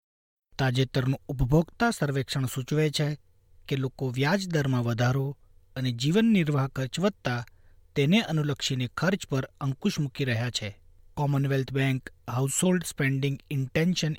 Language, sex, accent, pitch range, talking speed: Gujarati, male, native, 130-165 Hz, 120 wpm